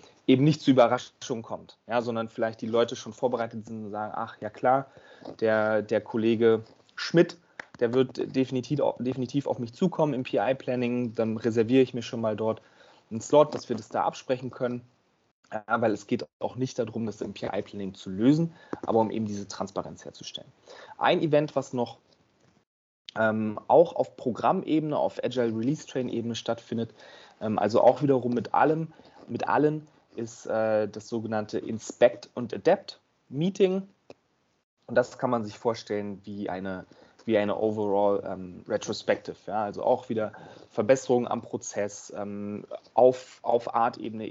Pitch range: 105-130 Hz